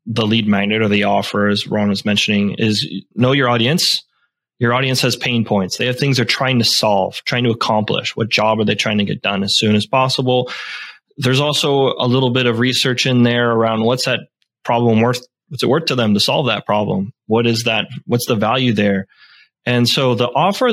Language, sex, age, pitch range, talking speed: English, male, 20-39, 110-135 Hz, 215 wpm